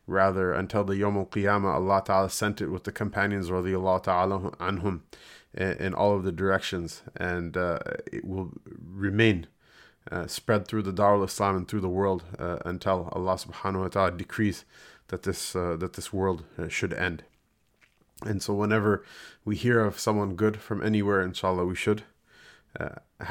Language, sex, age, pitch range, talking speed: English, male, 30-49, 95-110 Hz, 165 wpm